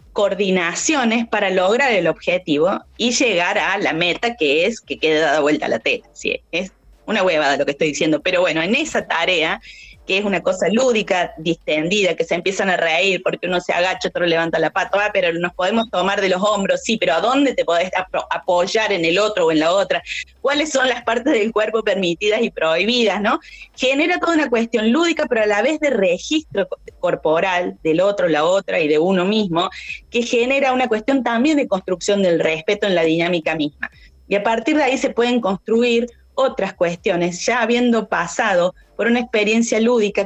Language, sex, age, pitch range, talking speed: Spanish, female, 20-39, 175-235 Hz, 195 wpm